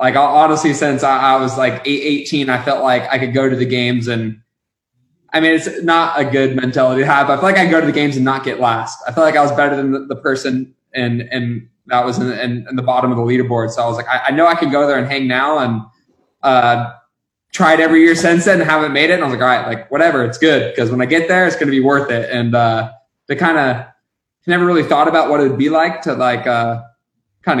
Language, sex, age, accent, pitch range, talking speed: English, male, 20-39, American, 125-145 Hz, 275 wpm